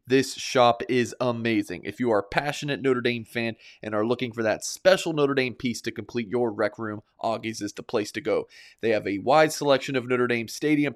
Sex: male